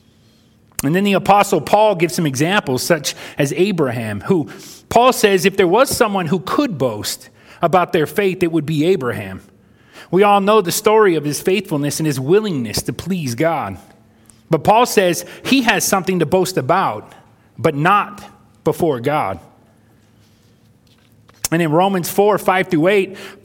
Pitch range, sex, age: 130-190 Hz, male, 30-49